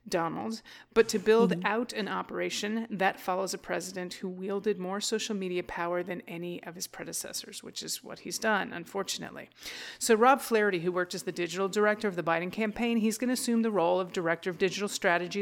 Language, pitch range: English, 185-220 Hz